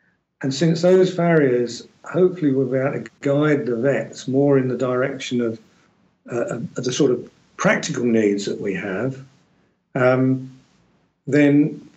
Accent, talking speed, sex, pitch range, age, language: British, 145 wpm, male, 130-180 Hz, 50-69, English